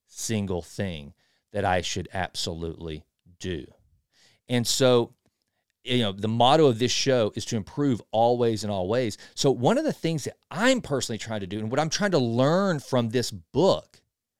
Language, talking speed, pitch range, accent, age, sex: English, 175 wpm, 110-150 Hz, American, 40-59, male